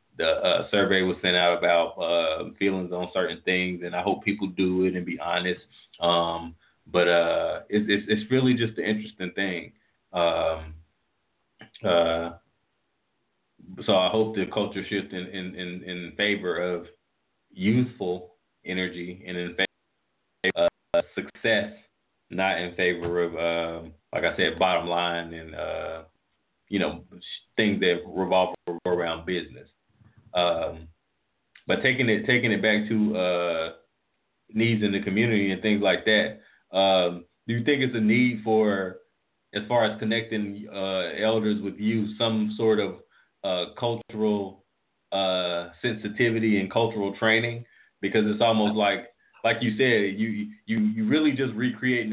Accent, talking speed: American, 145 wpm